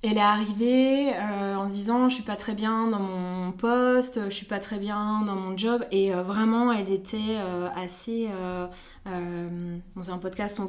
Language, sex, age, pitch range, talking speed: French, female, 20-39, 195-235 Hz, 195 wpm